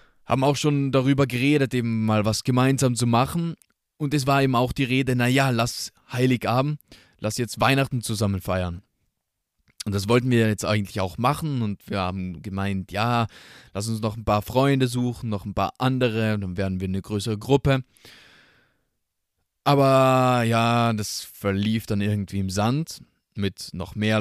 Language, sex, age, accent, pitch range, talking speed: German, male, 20-39, German, 100-120 Hz, 170 wpm